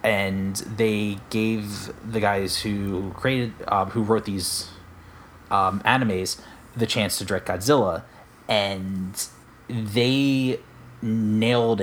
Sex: male